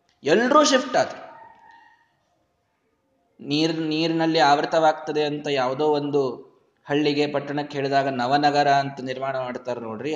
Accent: native